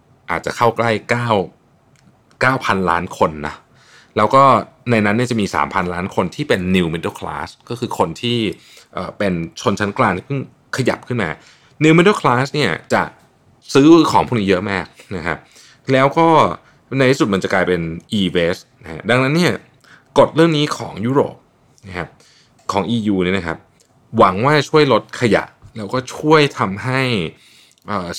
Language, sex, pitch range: Thai, male, 95-135 Hz